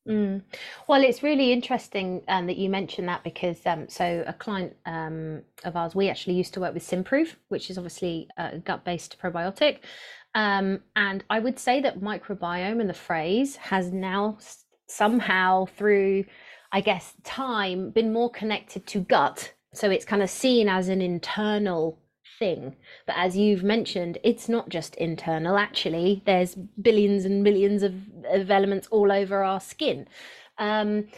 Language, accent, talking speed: English, British, 160 wpm